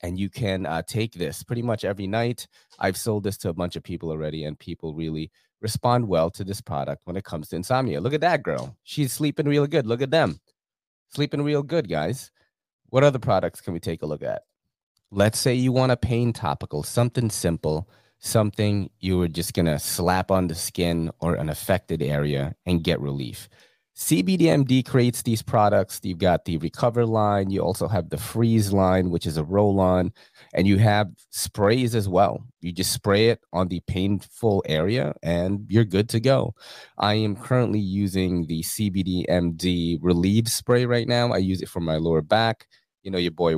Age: 30-49